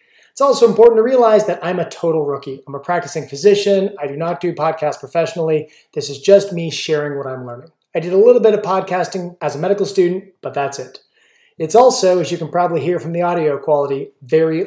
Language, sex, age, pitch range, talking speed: English, male, 30-49, 150-200 Hz, 220 wpm